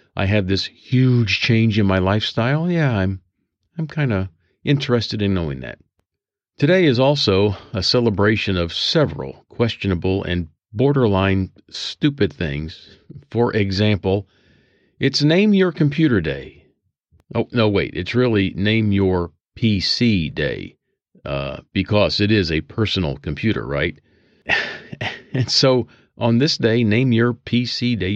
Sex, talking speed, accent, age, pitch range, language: male, 130 wpm, American, 50-69, 95-125 Hz, English